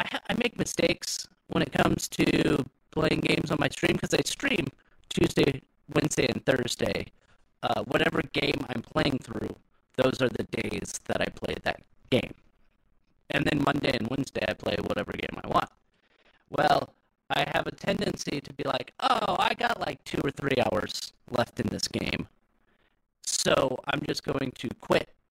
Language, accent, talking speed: English, American, 170 wpm